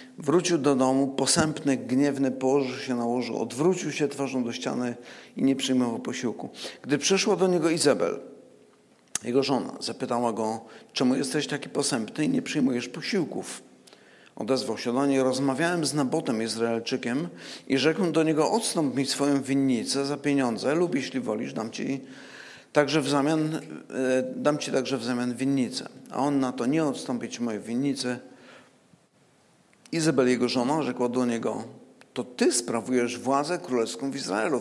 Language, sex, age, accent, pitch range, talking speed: Polish, male, 50-69, native, 130-155 Hz, 155 wpm